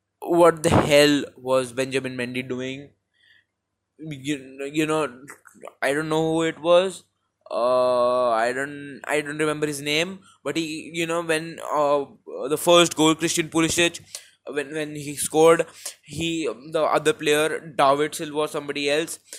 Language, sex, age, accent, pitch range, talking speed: Hindi, male, 10-29, native, 140-160 Hz, 150 wpm